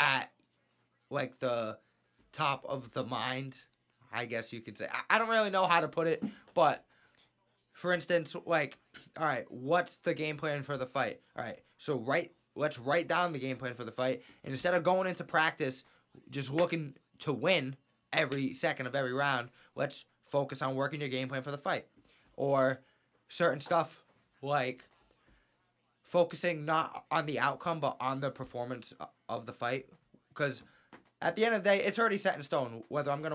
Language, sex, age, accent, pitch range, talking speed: English, male, 20-39, American, 130-160 Hz, 185 wpm